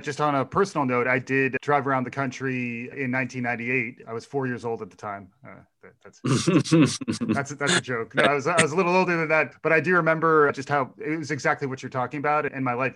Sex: male